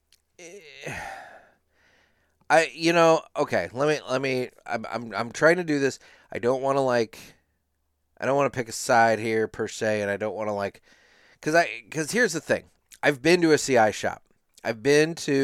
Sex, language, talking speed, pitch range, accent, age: male, English, 200 wpm, 105-140 Hz, American, 30-49